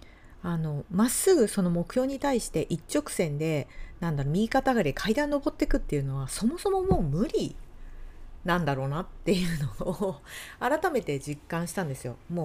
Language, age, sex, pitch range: Japanese, 40-59, female, 140-225 Hz